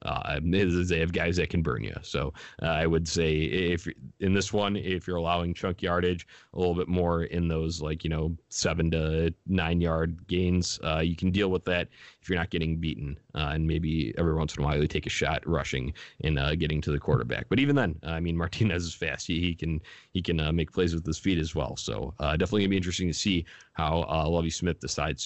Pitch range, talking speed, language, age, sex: 80-95 Hz, 240 wpm, English, 30-49, male